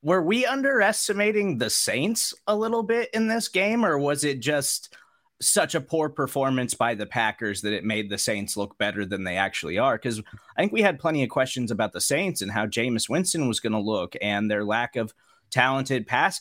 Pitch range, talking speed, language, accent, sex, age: 115-160 Hz, 210 wpm, English, American, male, 30-49